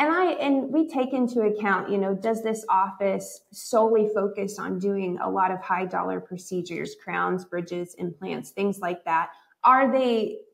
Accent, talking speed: American, 170 wpm